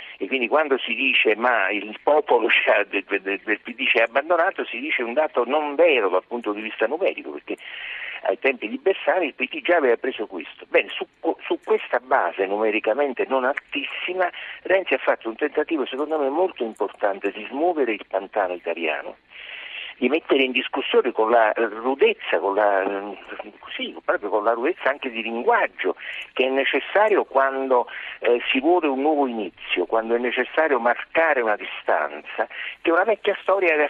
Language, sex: Italian, male